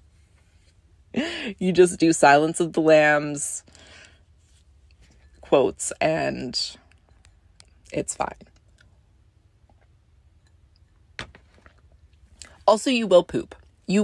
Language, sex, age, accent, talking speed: English, female, 20-39, American, 70 wpm